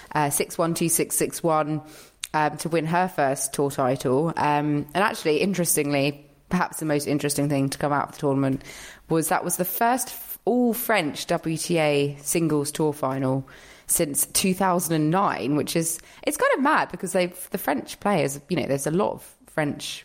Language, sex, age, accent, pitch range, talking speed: English, female, 20-39, British, 145-170 Hz, 170 wpm